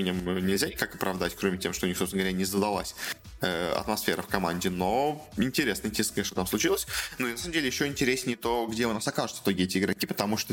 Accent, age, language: native, 20-39, Russian